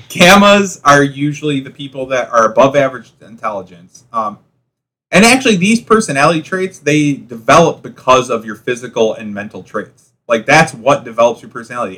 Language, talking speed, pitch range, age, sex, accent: English, 155 wpm, 105-135 Hz, 30-49, male, American